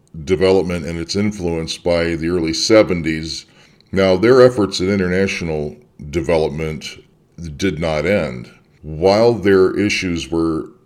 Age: 50-69